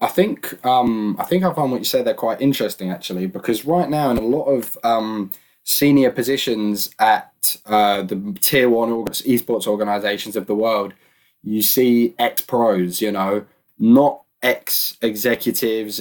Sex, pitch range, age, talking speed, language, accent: male, 105-120 Hz, 10-29, 160 wpm, English, British